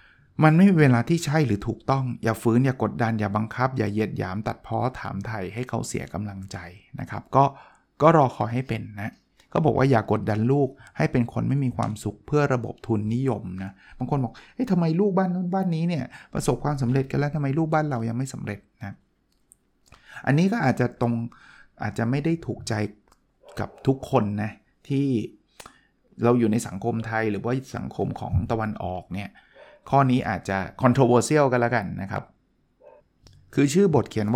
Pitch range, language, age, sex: 110-140 Hz, Thai, 20-39, male